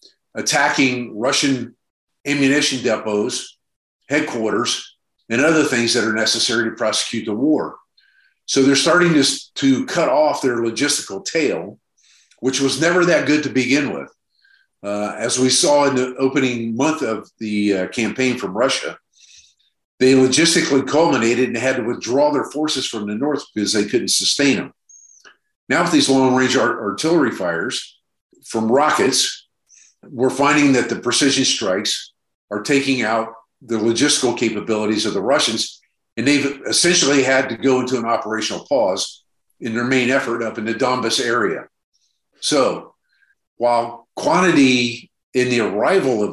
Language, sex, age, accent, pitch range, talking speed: German, male, 50-69, American, 115-140 Hz, 150 wpm